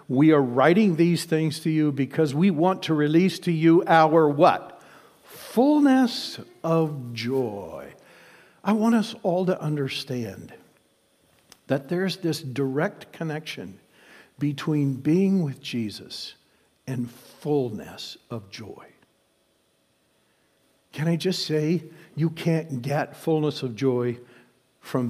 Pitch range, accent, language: 135-175 Hz, American, English